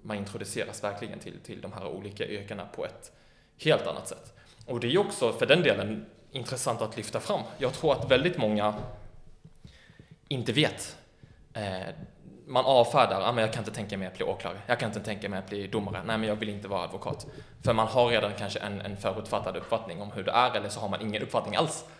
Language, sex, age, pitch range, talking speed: Swedish, male, 20-39, 100-125 Hz, 220 wpm